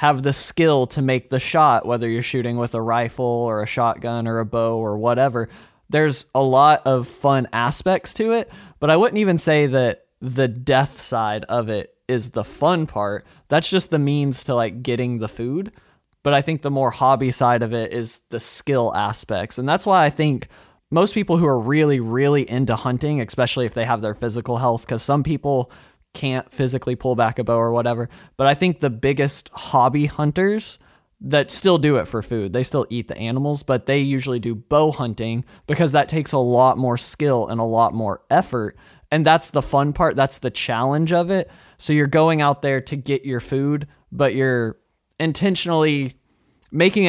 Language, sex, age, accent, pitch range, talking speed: English, male, 20-39, American, 120-150 Hz, 200 wpm